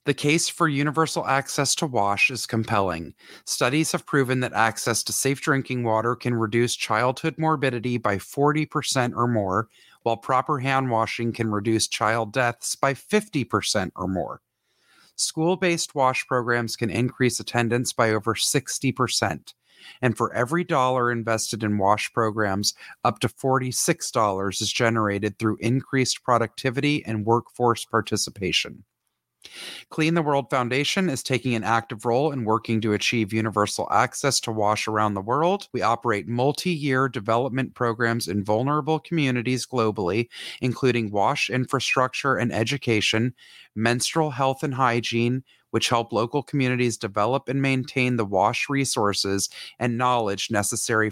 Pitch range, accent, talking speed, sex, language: 110-135 Hz, American, 135 wpm, male, English